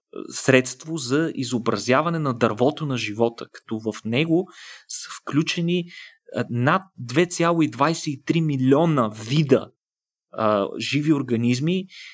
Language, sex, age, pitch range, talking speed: Bulgarian, male, 30-49, 120-165 Hz, 90 wpm